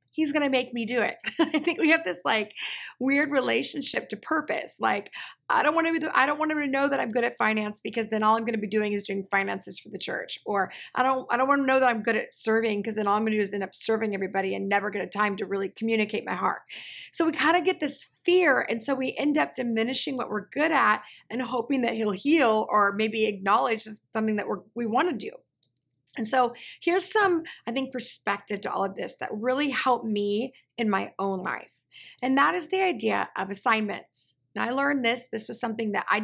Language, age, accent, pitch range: English, 30-49, American, 215-290 Hz